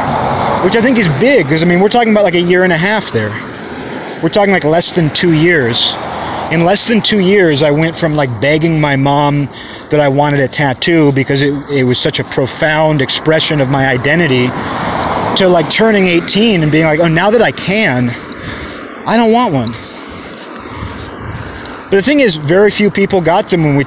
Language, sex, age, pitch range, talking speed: English, male, 30-49, 140-190 Hz, 200 wpm